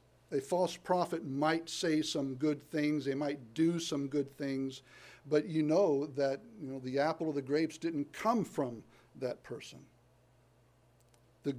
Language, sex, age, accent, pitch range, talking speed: English, male, 60-79, American, 130-165 Hz, 160 wpm